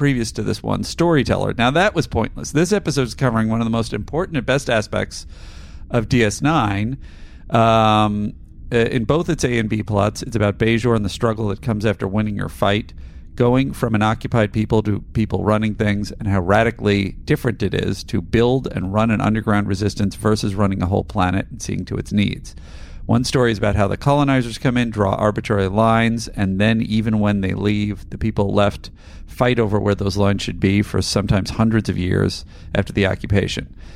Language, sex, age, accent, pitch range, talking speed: English, male, 40-59, American, 95-115 Hz, 195 wpm